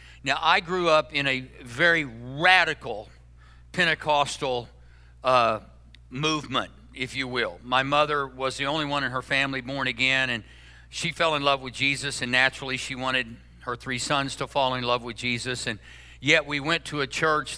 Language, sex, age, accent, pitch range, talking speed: English, male, 50-69, American, 125-160 Hz, 180 wpm